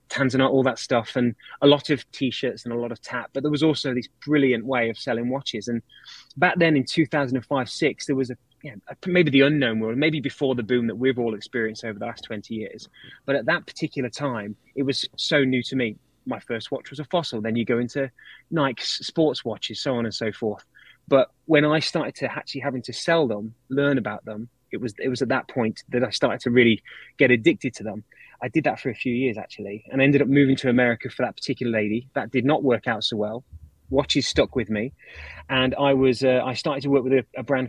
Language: English